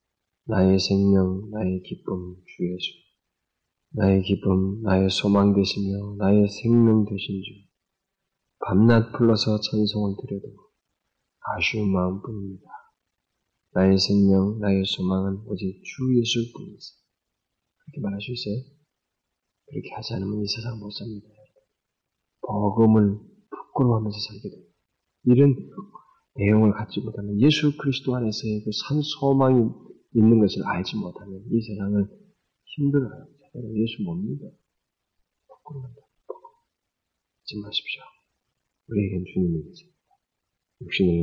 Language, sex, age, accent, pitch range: Korean, male, 30-49, native, 100-135 Hz